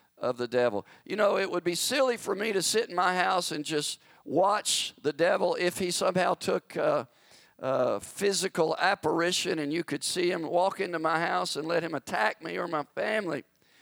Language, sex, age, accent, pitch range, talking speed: English, male, 50-69, American, 145-190 Hz, 205 wpm